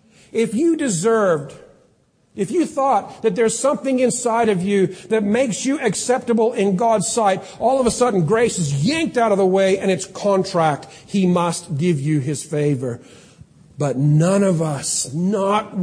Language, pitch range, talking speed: English, 155-215 Hz, 165 wpm